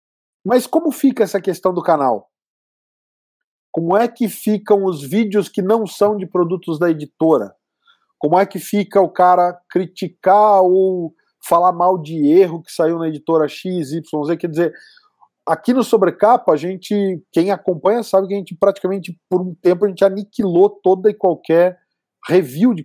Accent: Brazilian